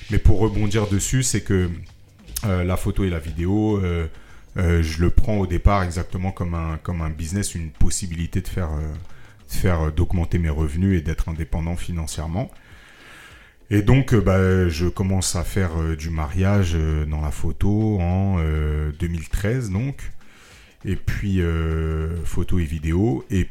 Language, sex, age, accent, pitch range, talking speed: French, male, 40-59, French, 80-100 Hz, 170 wpm